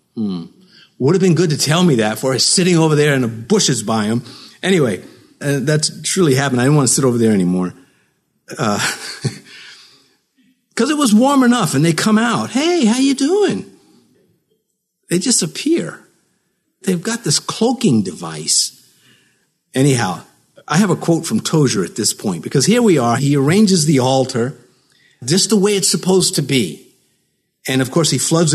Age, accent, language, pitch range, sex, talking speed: 50-69, American, English, 130-195 Hz, male, 175 wpm